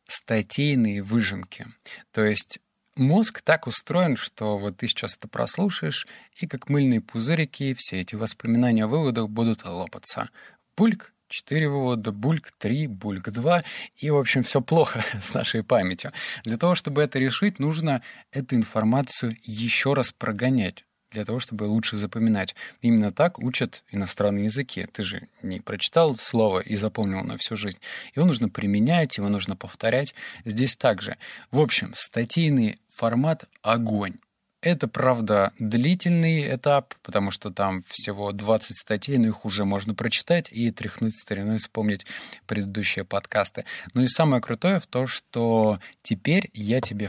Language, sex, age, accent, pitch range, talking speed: Russian, male, 20-39, native, 105-145 Hz, 145 wpm